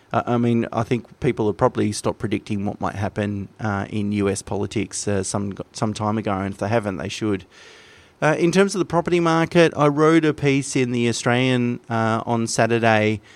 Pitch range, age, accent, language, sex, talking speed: 105-120 Hz, 30-49, Australian, English, male, 200 wpm